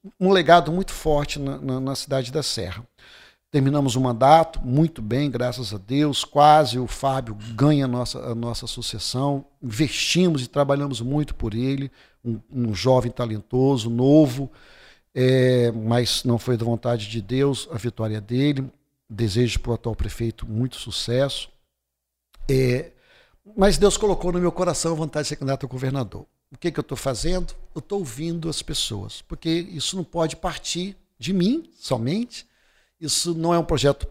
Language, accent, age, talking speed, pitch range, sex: Portuguese, Brazilian, 50-69, 160 wpm, 125-165 Hz, male